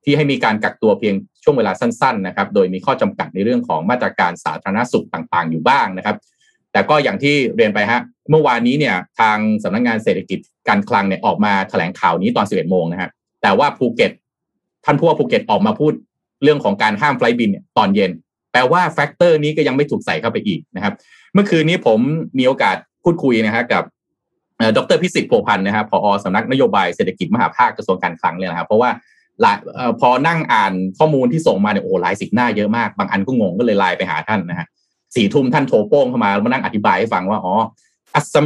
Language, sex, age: Thai, male, 20-39